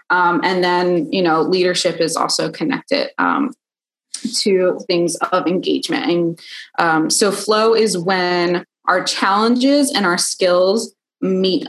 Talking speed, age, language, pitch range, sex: 135 wpm, 20-39, English, 170-210 Hz, female